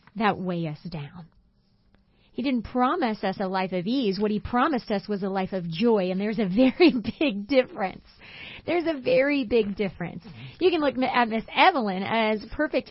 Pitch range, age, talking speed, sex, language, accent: 200-250 Hz, 30-49, 190 wpm, female, English, American